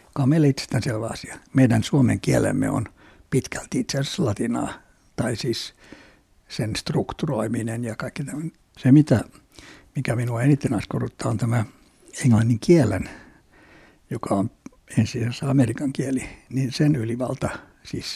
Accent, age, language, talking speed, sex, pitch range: native, 60-79, Finnish, 115 wpm, male, 120-145 Hz